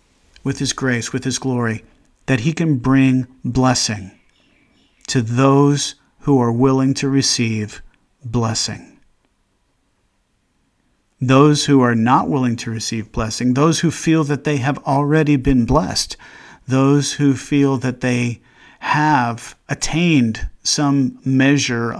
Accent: American